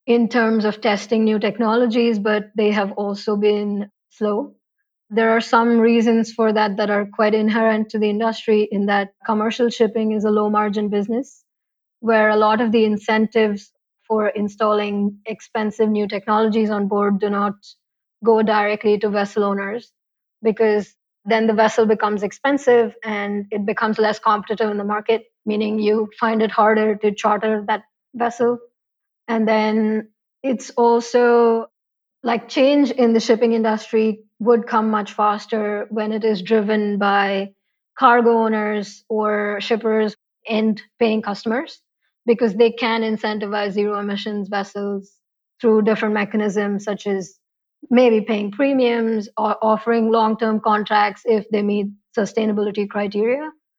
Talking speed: 140 wpm